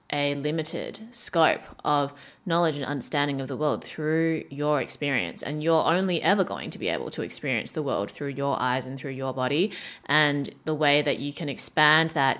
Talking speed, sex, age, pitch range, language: 195 wpm, female, 20-39, 145-170 Hz, English